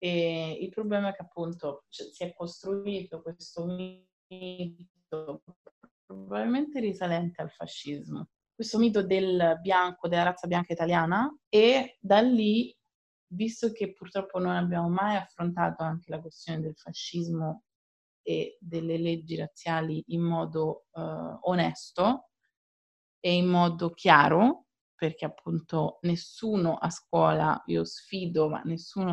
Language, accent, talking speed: Italian, native, 115 wpm